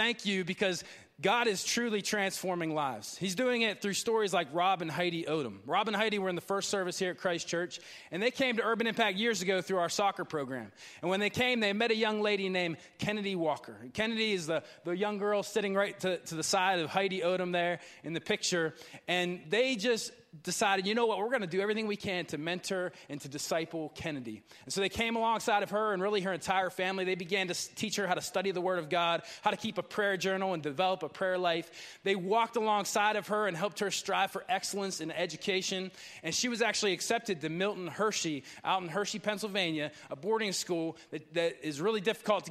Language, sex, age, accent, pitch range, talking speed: English, male, 20-39, American, 175-210 Hz, 230 wpm